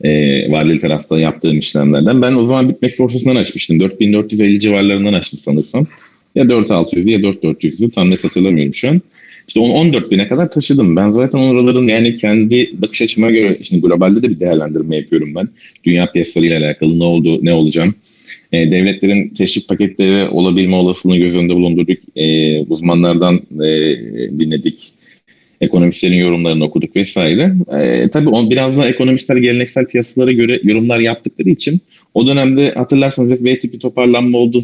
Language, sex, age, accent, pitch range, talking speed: Turkish, male, 40-59, native, 85-120 Hz, 150 wpm